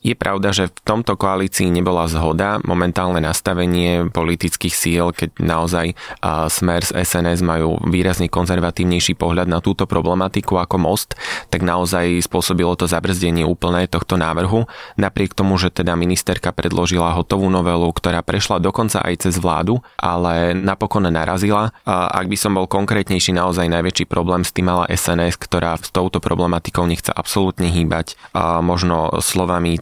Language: Slovak